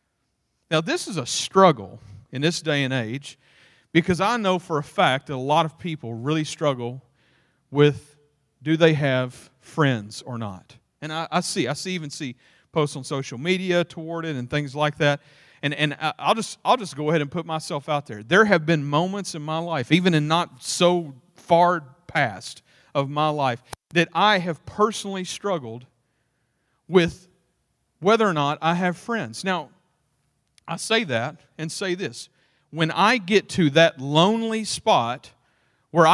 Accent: American